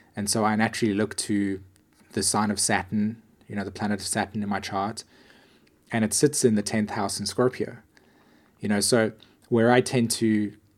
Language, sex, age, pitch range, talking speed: English, male, 20-39, 100-115 Hz, 195 wpm